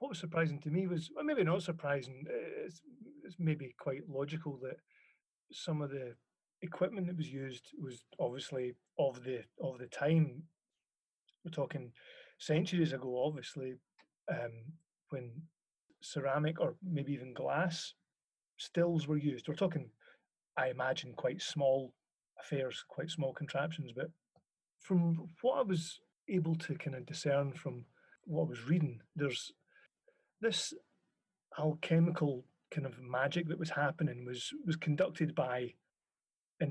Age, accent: 30-49, British